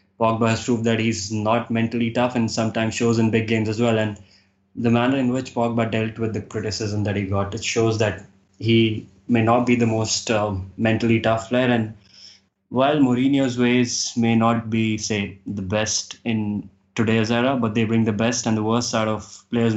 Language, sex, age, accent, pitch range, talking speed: English, male, 20-39, Indian, 105-120 Hz, 200 wpm